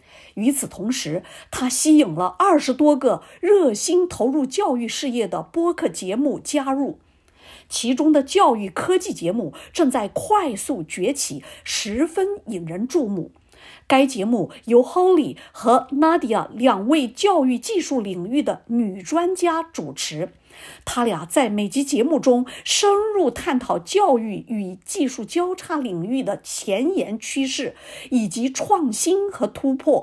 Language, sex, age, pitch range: English, female, 50-69, 230-325 Hz